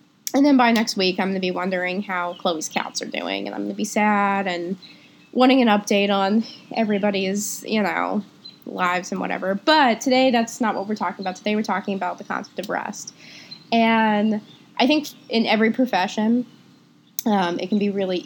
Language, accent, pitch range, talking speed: English, American, 195-230 Hz, 195 wpm